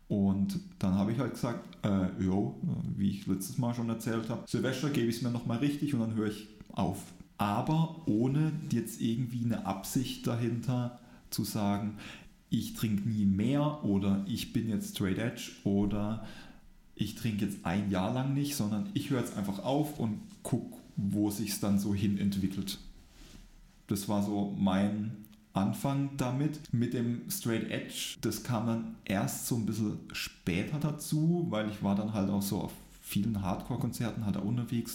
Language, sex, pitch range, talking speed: German, male, 100-130 Hz, 170 wpm